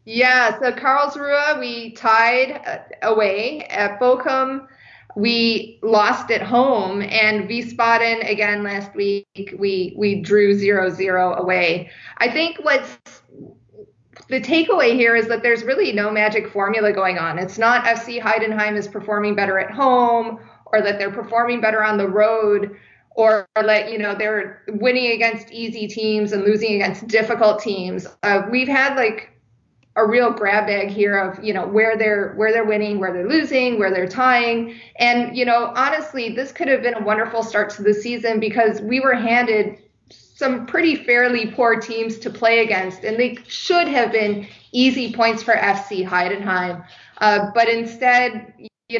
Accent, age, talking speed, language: American, 30-49, 160 wpm, German